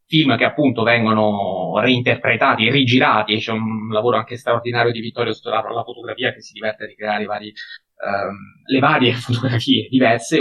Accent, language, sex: native, Italian, male